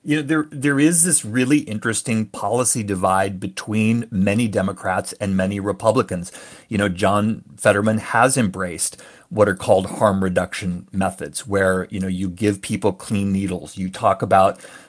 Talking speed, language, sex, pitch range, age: 155 wpm, English, male, 95-115 Hz, 30-49